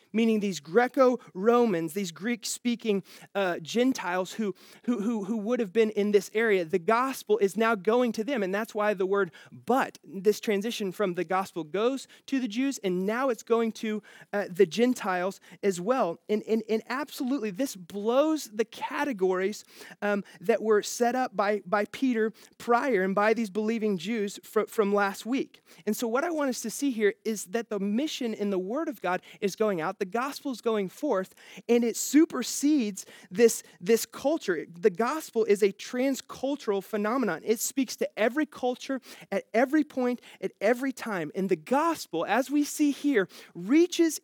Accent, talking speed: American, 180 wpm